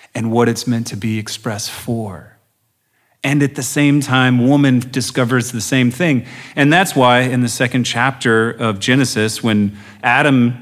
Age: 40-59